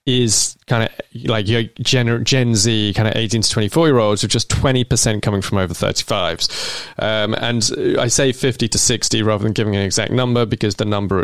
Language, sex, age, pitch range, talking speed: English, male, 20-39, 100-120 Hz, 205 wpm